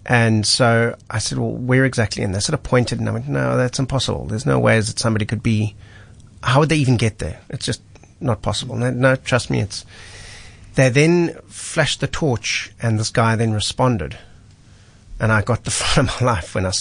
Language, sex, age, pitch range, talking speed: English, male, 30-49, 100-120 Hz, 220 wpm